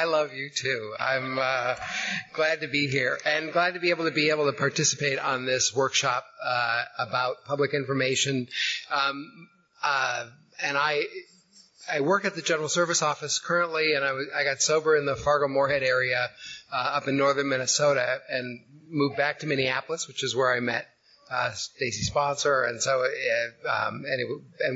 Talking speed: 180 wpm